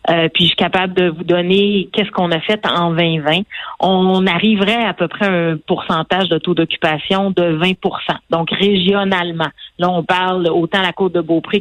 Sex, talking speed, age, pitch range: female, 180 wpm, 40-59, 165-200 Hz